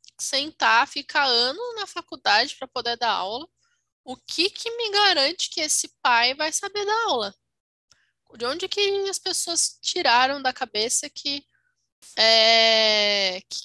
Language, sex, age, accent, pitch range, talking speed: Portuguese, female, 10-29, Brazilian, 230-320 Hz, 140 wpm